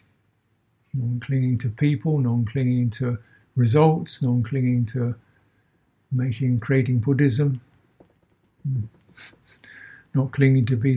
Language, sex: English, male